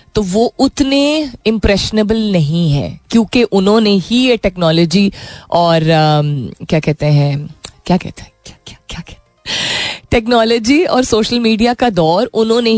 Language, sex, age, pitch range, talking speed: Hindi, female, 30-49, 155-200 Hz, 140 wpm